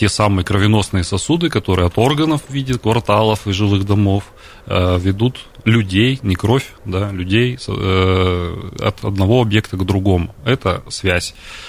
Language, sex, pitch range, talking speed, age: Russian, male, 95-115 Hz, 130 wpm, 30-49